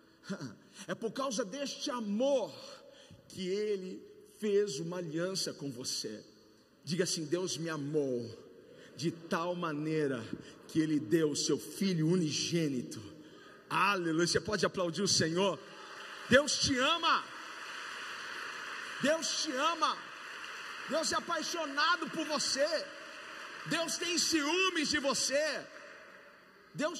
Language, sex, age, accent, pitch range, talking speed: Portuguese, male, 50-69, Brazilian, 190-290 Hz, 110 wpm